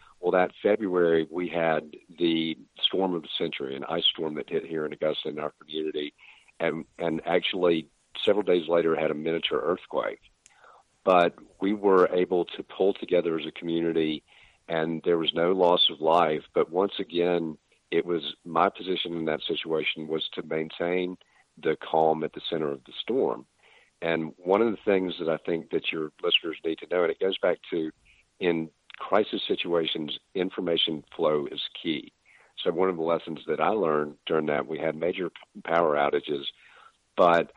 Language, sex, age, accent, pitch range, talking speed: English, male, 50-69, American, 80-95 Hz, 175 wpm